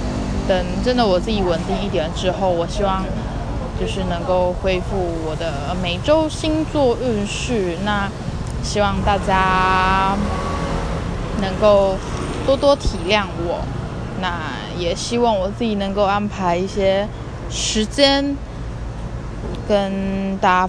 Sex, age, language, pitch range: female, 20-39, Chinese, 155-215 Hz